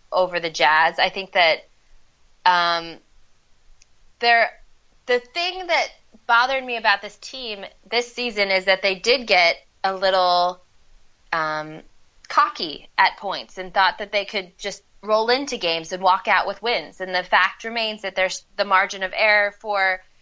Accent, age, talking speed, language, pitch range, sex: American, 20-39, 160 wpm, English, 165-215 Hz, female